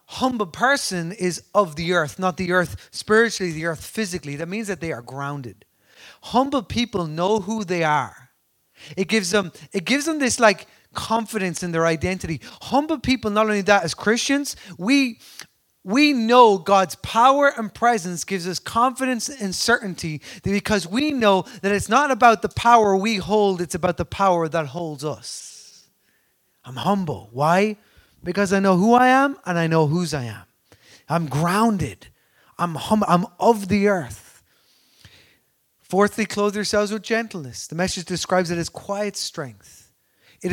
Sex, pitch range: male, 165-215 Hz